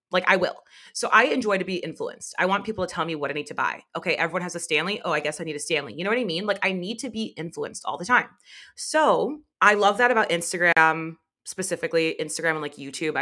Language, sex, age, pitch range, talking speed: English, female, 30-49, 160-205 Hz, 260 wpm